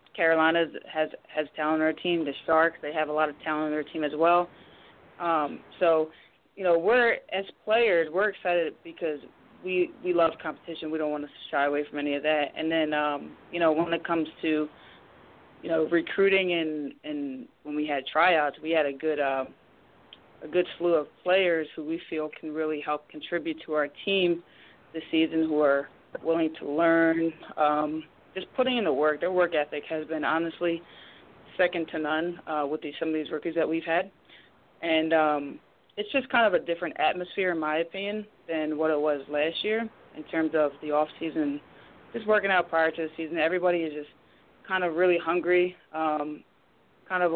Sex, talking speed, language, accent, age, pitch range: female, 195 wpm, English, American, 20-39, 155-175 Hz